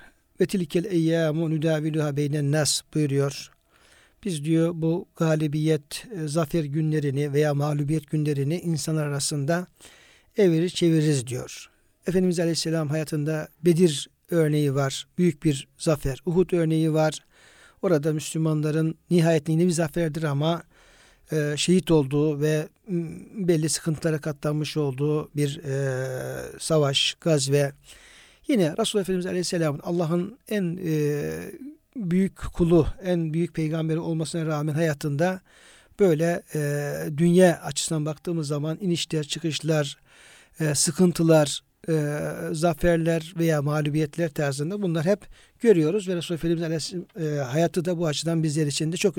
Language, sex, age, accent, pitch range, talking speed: Turkish, male, 60-79, native, 150-175 Hz, 120 wpm